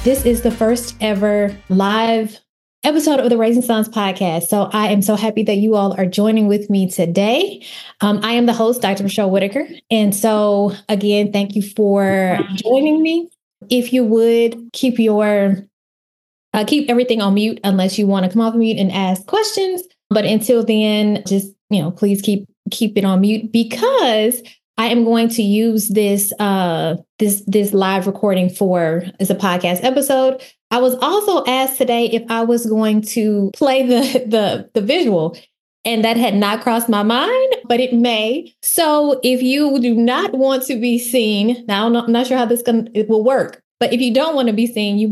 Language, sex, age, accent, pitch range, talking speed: English, female, 20-39, American, 200-245 Hz, 190 wpm